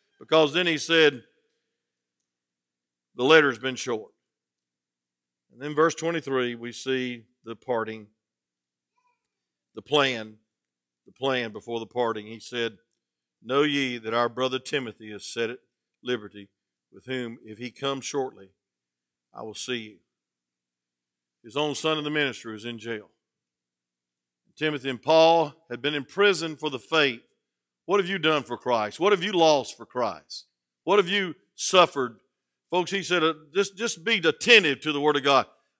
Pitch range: 95-150 Hz